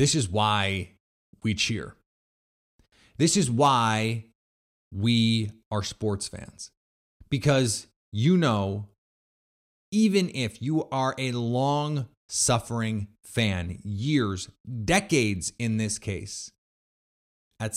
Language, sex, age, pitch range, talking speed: English, male, 30-49, 100-130 Hz, 95 wpm